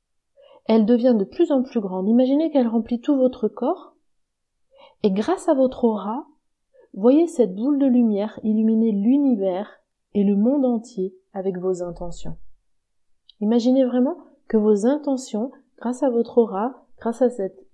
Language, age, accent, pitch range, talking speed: French, 30-49, French, 190-255 Hz, 150 wpm